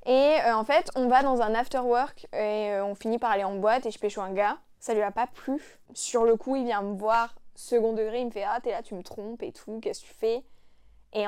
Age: 10-29